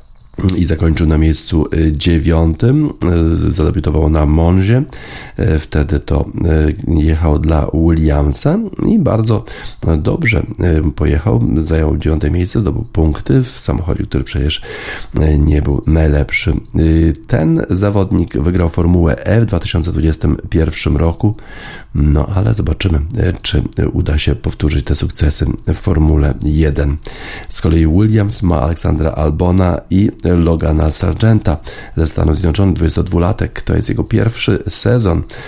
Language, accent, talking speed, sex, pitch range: Polish, native, 115 wpm, male, 75-90 Hz